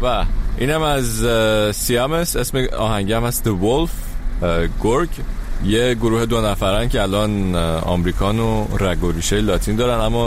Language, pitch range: Persian, 95-130 Hz